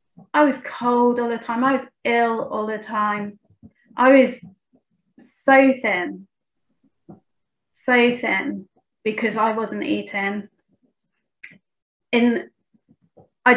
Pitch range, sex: 215-250 Hz, female